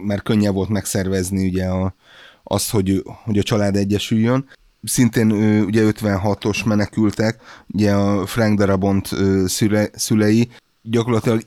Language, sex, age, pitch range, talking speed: Hungarian, male, 30-49, 100-115 Hz, 120 wpm